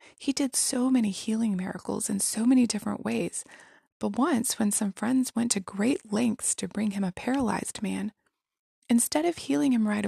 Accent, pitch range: American, 195-250 Hz